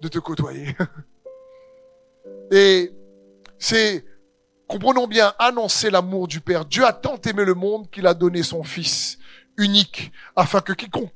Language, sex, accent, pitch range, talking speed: French, male, French, 155-225 Hz, 140 wpm